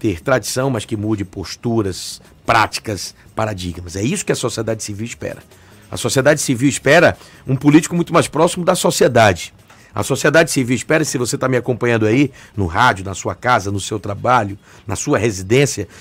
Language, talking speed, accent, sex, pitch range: Portuguese, 180 wpm, Brazilian, male, 105-150 Hz